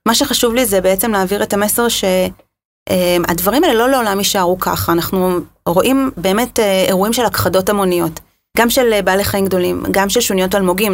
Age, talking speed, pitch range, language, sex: 30-49, 165 wpm, 185-225 Hz, Hebrew, female